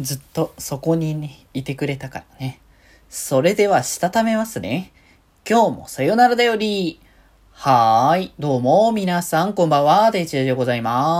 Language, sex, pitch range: Japanese, male, 125-185 Hz